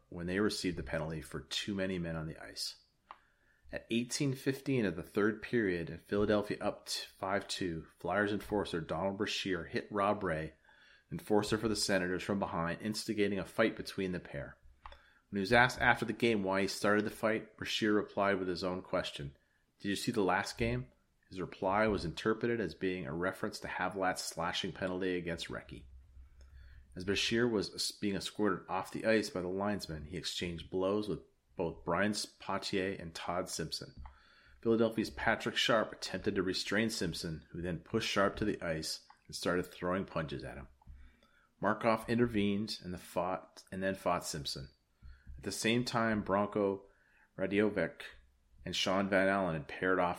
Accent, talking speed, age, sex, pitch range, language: American, 170 wpm, 30-49, male, 85-105 Hz, English